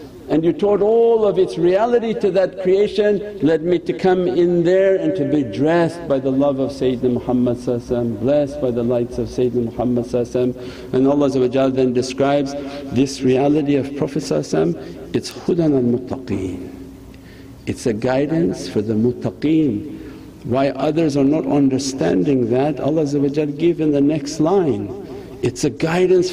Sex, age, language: male, 60-79, English